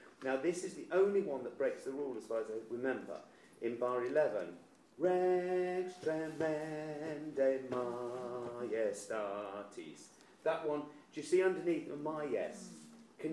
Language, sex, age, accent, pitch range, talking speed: English, male, 40-59, British, 120-180 Hz, 145 wpm